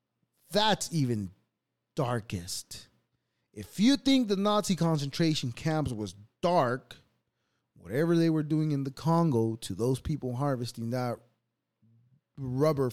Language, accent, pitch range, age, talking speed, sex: English, American, 110-155 Hz, 20-39, 115 wpm, male